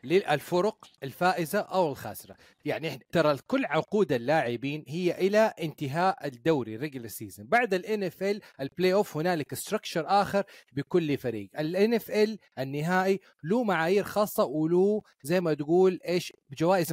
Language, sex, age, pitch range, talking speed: Arabic, male, 30-49, 145-200 Hz, 145 wpm